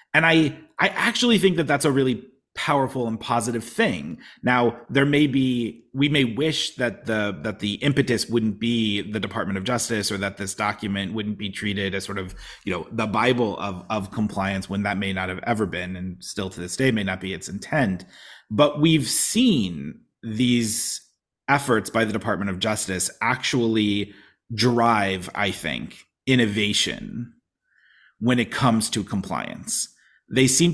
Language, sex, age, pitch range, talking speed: English, male, 30-49, 100-135 Hz, 170 wpm